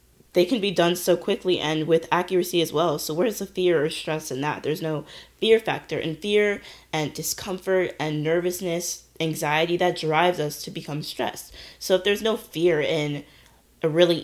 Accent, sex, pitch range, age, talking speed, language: American, female, 155-180 Hz, 20-39, 185 wpm, English